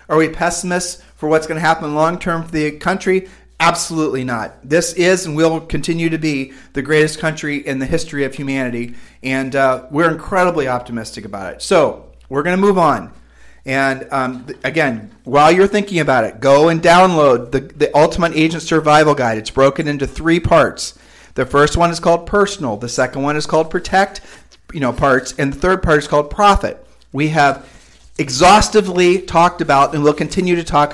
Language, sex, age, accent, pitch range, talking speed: English, male, 40-59, American, 135-165 Hz, 190 wpm